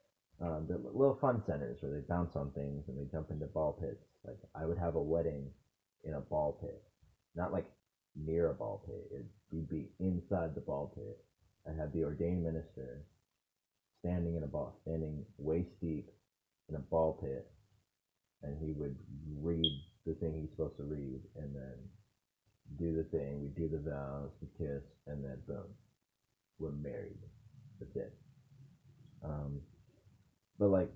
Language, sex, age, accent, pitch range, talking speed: English, male, 30-49, American, 75-100 Hz, 165 wpm